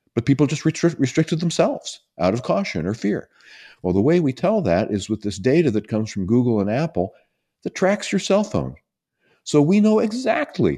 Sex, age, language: male, 50-69, English